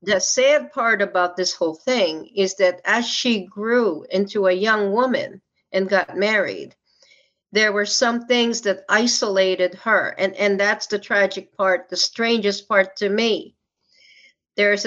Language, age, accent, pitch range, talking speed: English, 50-69, American, 190-230 Hz, 155 wpm